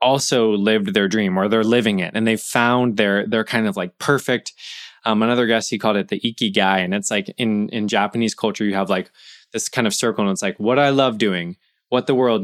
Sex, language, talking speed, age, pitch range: male, English, 240 wpm, 20-39, 105-130 Hz